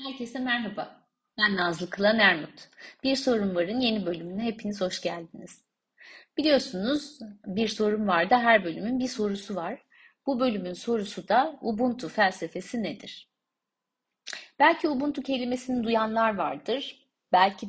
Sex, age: female, 30-49